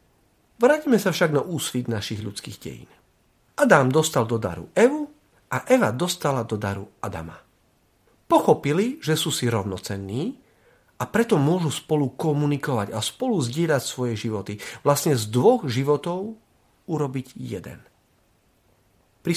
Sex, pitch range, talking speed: male, 110-170 Hz, 125 wpm